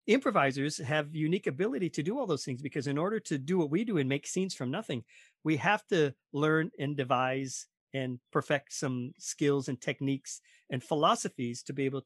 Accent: American